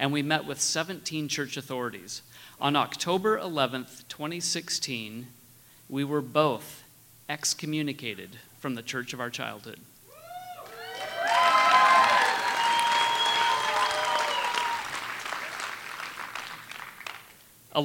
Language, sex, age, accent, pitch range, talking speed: English, male, 30-49, American, 130-175 Hz, 75 wpm